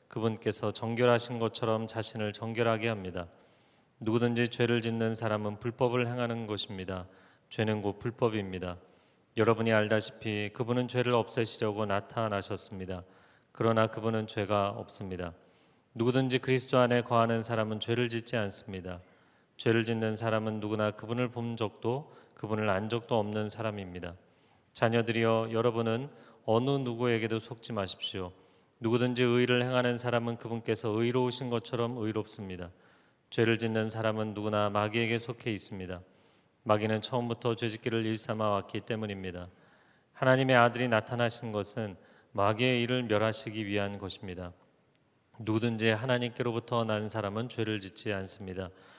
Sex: male